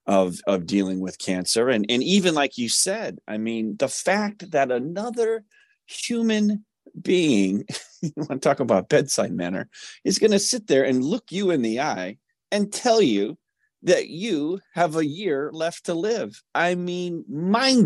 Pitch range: 100-165 Hz